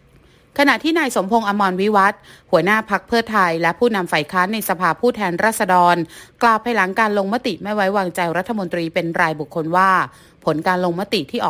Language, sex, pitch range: Thai, female, 170-215 Hz